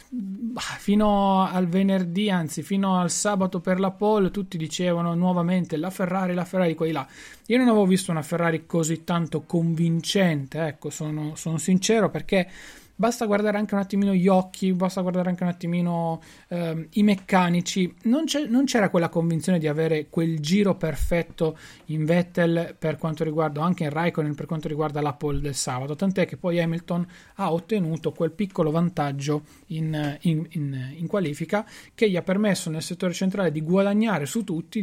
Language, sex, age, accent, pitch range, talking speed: Italian, male, 30-49, native, 155-190 Hz, 170 wpm